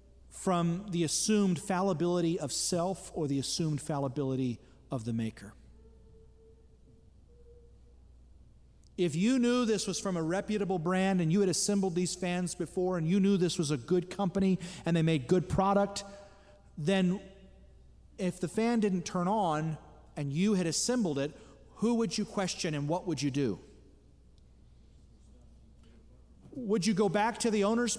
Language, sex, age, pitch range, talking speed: English, male, 40-59, 140-200 Hz, 150 wpm